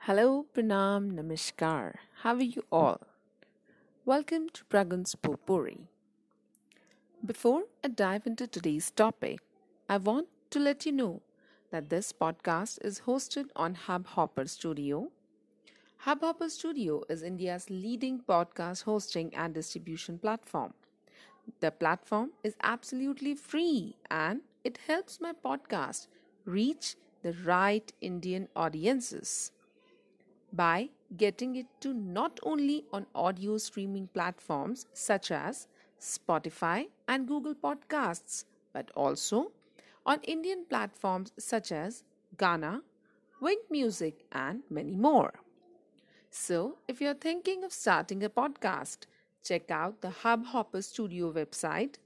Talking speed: 115 wpm